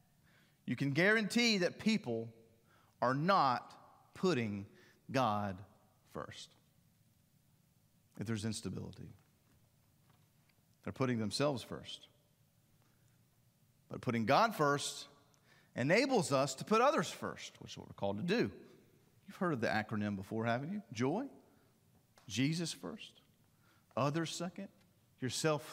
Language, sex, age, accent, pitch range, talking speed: English, male, 40-59, American, 115-150 Hz, 110 wpm